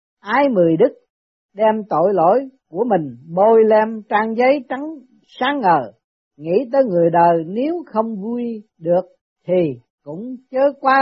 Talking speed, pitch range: 145 wpm, 165-235 Hz